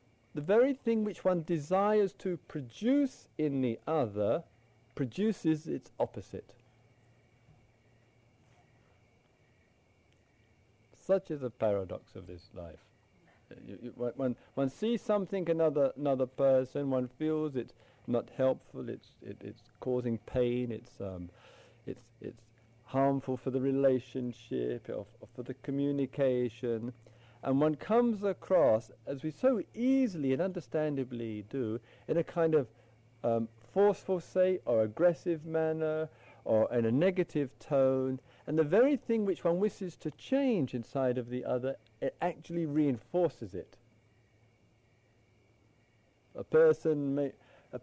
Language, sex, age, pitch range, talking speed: English, male, 50-69, 115-160 Hz, 120 wpm